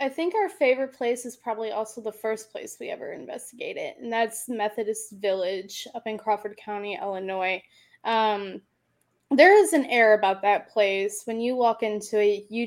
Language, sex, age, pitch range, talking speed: English, female, 10-29, 205-250 Hz, 175 wpm